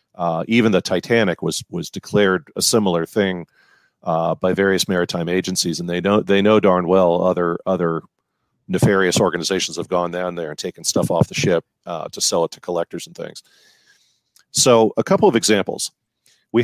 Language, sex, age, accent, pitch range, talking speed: English, male, 40-59, American, 85-100 Hz, 180 wpm